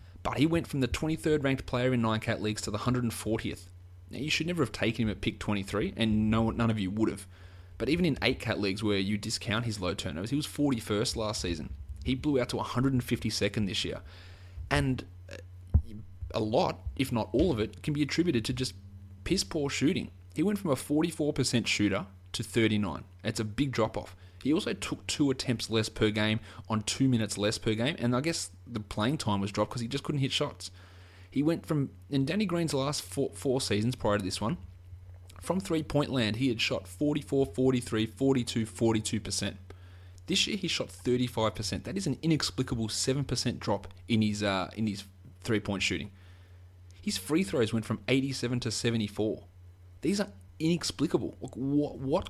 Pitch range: 95-130 Hz